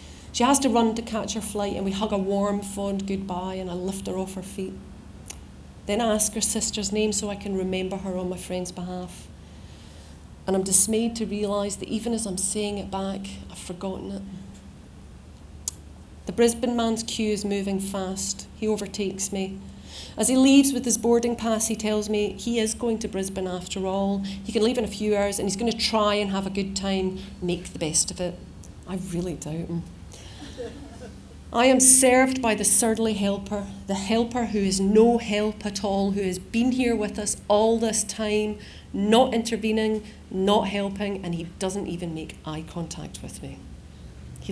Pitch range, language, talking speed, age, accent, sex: 185-225 Hz, English, 190 wpm, 40-59, British, female